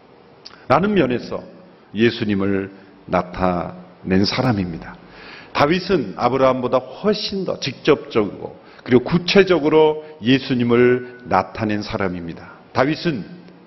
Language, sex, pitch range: Korean, male, 110-170 Hz